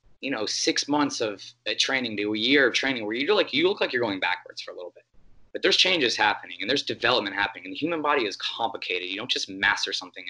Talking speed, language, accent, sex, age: 250 wpm, English, American, male, 20-39